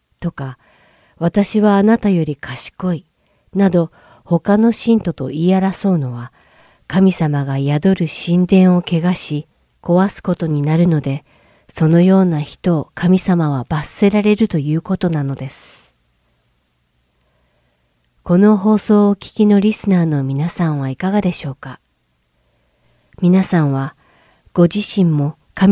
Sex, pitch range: female, 145-190 Hz